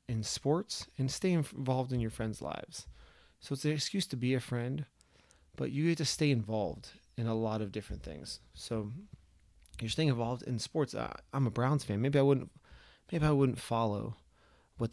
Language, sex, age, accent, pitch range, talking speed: English, male, 30-49, American, 105-130 Hz, 180 wpm